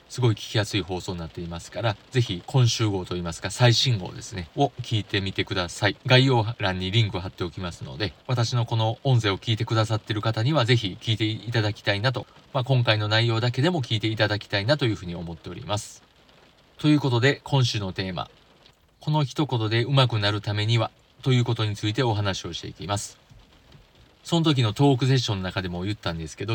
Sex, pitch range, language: male, 100-130 Hz, Japanese